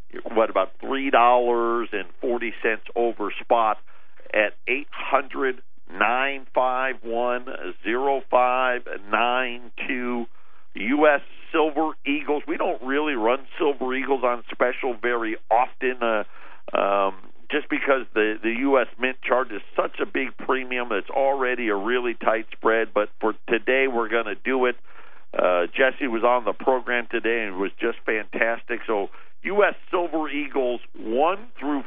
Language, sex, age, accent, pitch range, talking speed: English, male, 50-69, American, 120-145 Hz, 145 wpm